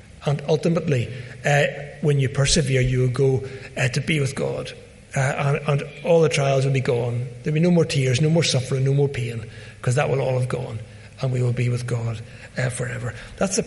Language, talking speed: English, 225 wpm